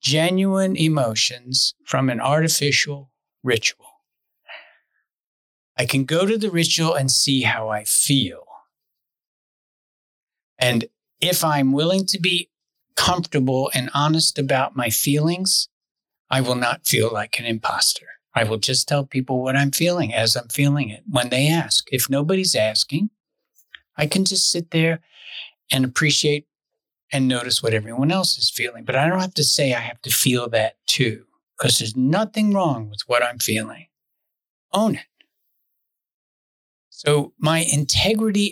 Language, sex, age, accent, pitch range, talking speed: English, male, 50-69, American, 125-165 Hz, 145 wpm